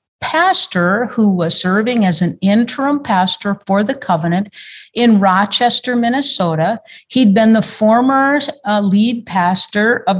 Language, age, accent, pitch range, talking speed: English, 50-69, American, 180-230 Hz, 130 wpm